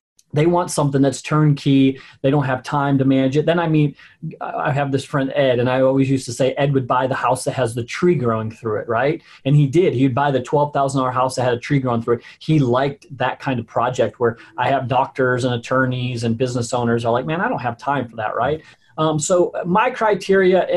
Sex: male